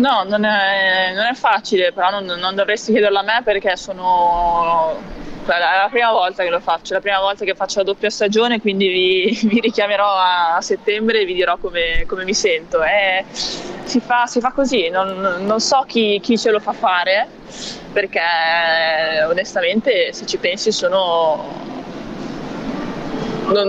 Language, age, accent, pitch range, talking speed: Italian, 20-39, native, 175-215 Hz, 160 wpm